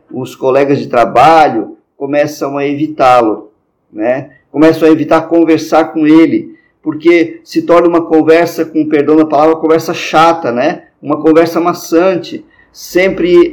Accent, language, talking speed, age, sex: Brazilian, Portuguese, 140 wpm, 50-69, male